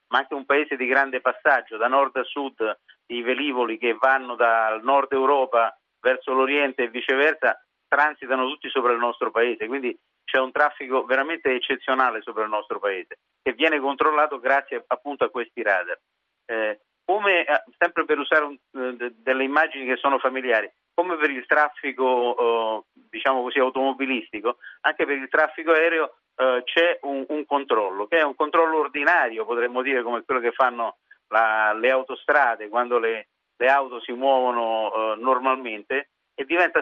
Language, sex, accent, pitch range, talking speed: Italian, male, native, 125-145 Hz, 160 wpm